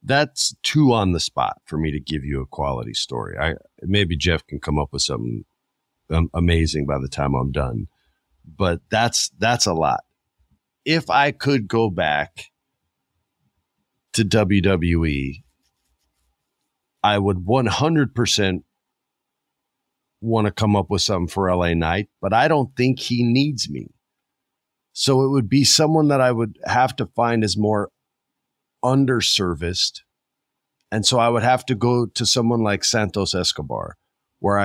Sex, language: male, English